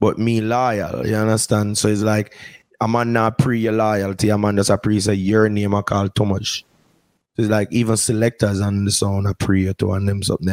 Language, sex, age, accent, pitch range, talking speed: English, male, 20-39, Jamaican, 100-110 Hz, 215 wpm